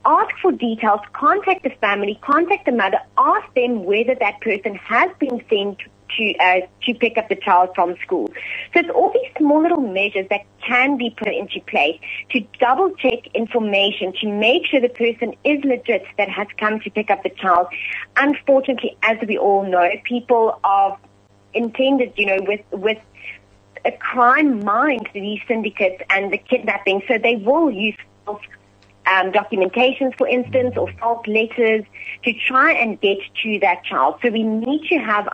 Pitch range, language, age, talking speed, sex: 195-255 Hz, English, 30-49, 170 wpm, female